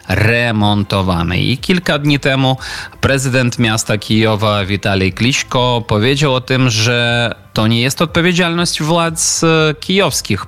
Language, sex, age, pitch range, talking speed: Polish, male, 20-39, 105-135 Hz, 115 wpm